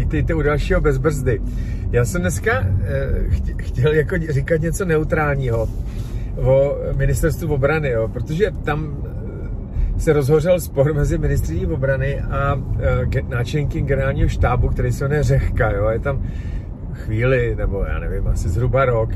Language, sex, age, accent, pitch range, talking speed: Czech, male, 40-59, native, 95-140 Hz, 135 wpm